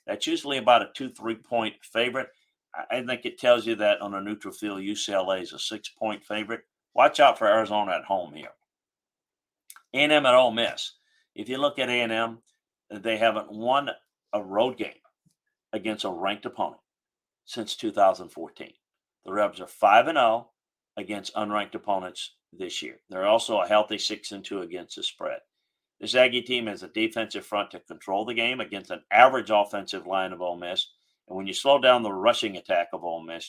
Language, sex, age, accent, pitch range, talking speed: English, male, 50-69, American, 100-125 Hz, 185 wpm